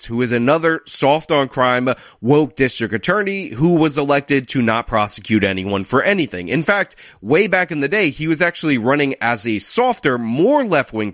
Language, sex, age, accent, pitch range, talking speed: English, male, 30-49, American, 125-180 Hz, 170 wpm